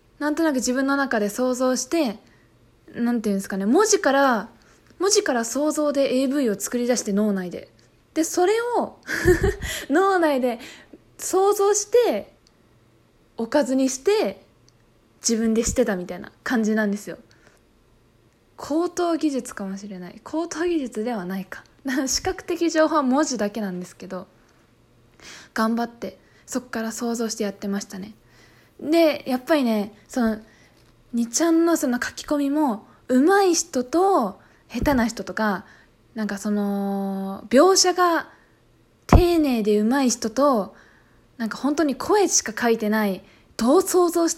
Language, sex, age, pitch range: Japanese, female, 20-39, 215-305 Hz